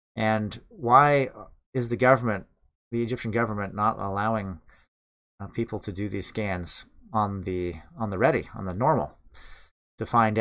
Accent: American